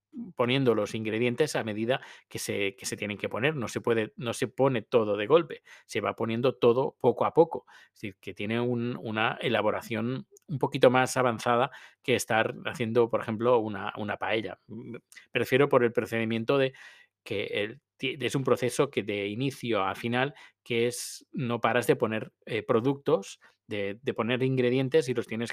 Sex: male